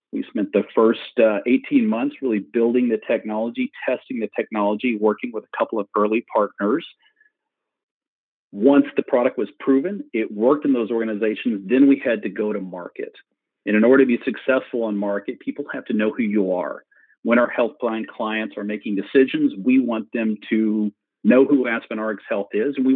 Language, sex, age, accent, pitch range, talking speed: English, male, 40-59, American, 105-130 Hz, 185 wpm